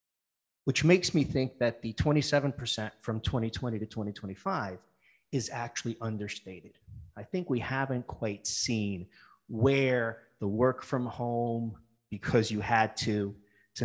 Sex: male